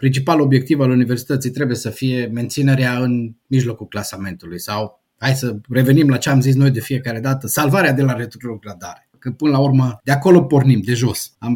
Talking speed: 190 wpm